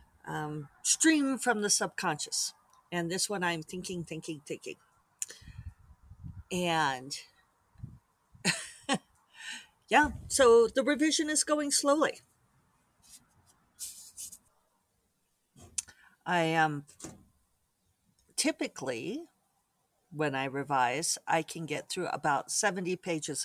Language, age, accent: English, 50-69, American